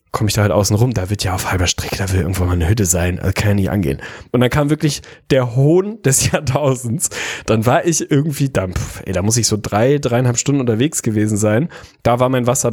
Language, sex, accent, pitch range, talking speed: German, male, German, 115-145 Hz, 250 wpm